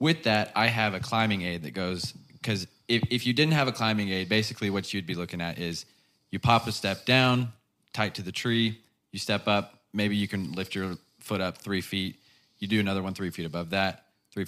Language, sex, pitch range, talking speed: English, male, 95-110 Hz, 225 wpm